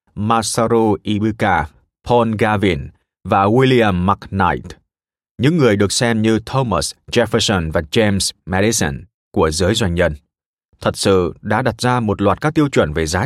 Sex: male